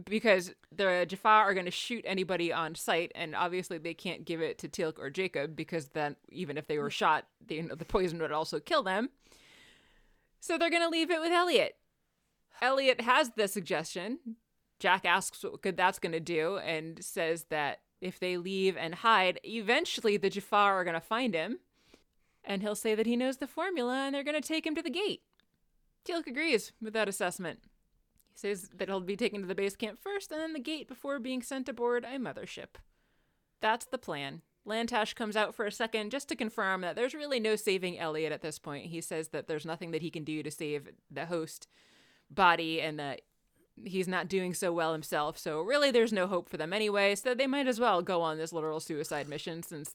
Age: 20-39